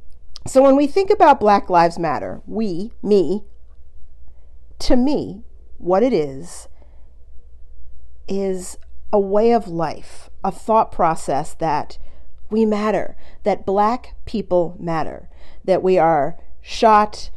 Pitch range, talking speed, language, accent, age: 165-215 Hz, 115 wpm, English, American, 40-59